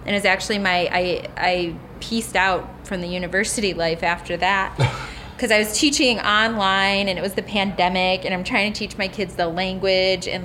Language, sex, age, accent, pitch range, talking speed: English, female, 20-39, American, 185-230 Hz, 195 wpm